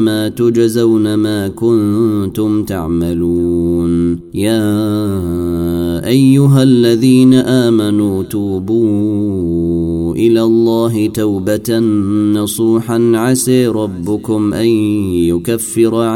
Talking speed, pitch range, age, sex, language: 65 wpm, 100-115 Hz, 30-49, male, Arabic